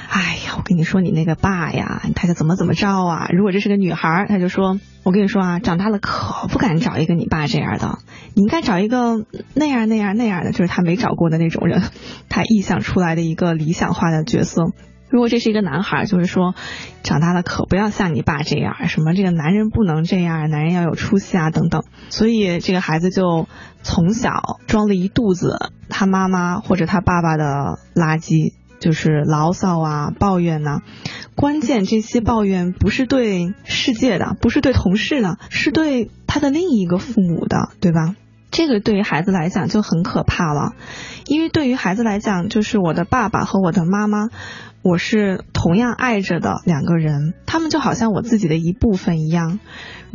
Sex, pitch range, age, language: female, 170-215 Hz, 20-39, Chinese